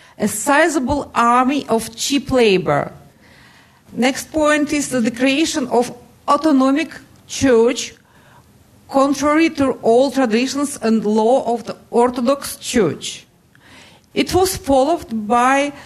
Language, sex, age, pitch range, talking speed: English, female, 50-69, 225-280 Hz, 110 wpm